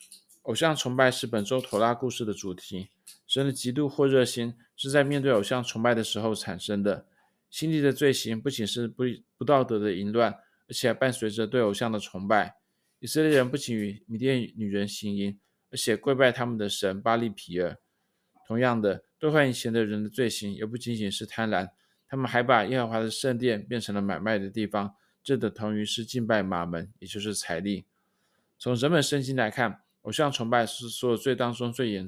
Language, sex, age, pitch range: Chinese, male, 20-39, 105-130 Hz